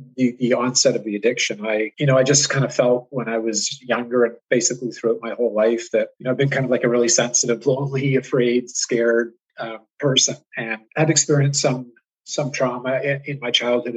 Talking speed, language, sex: 215 wpm, English, male